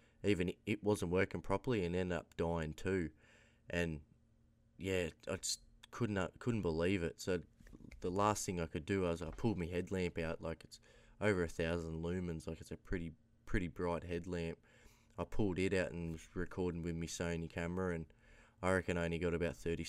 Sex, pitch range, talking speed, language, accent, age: male, 85-100 Hz, 190 wpm, English, Australian, 20-39